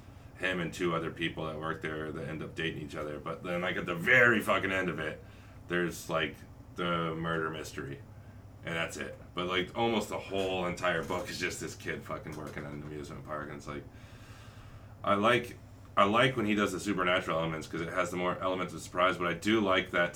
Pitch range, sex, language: 80-100 Hz, male, English